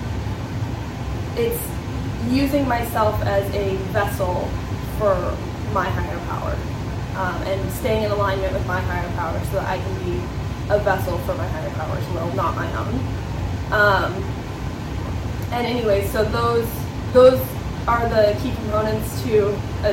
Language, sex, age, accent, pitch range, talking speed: English, female, 10-29, American, 95-115 Hz, 140 wpm